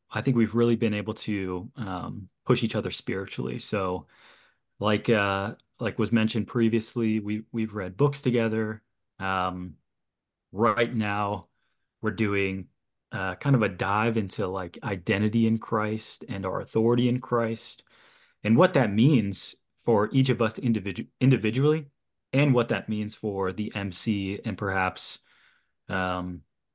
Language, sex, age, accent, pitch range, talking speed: English, male, 30-49, American, 100-115 Hz, 140 wpm